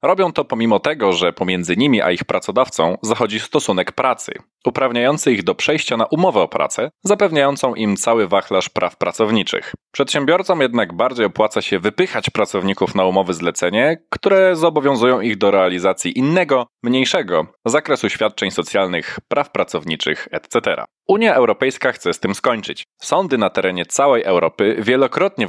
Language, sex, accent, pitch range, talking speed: Polish, male, native, 100-145 Hz, 145 wpm